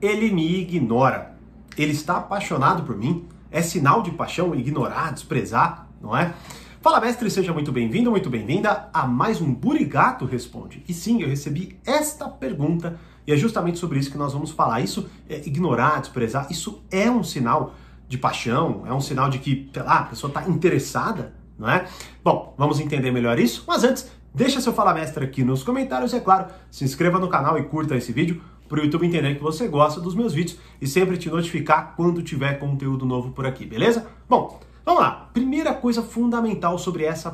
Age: 40-59